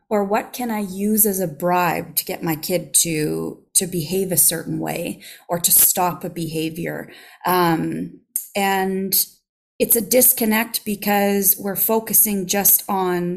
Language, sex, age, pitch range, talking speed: English, female, 30-49, 180-220 Hz, 150 wpm